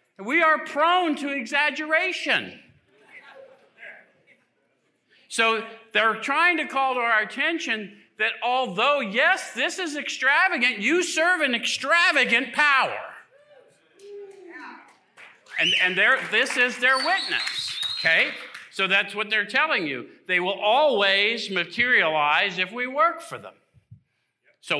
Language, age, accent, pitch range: English, 50-69, American, 185-295 Hz